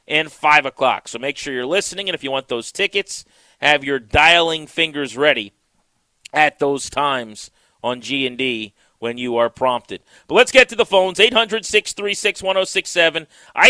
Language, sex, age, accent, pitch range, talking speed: English, male, 30-49, American, 145-190 Hz, 155 wpm